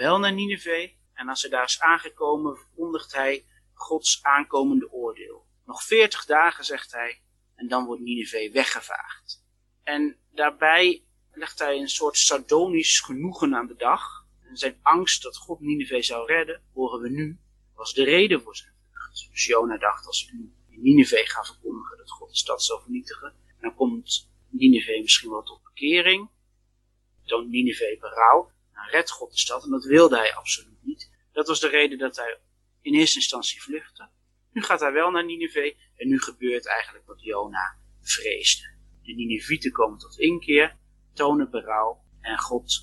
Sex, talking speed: male, 170 wpm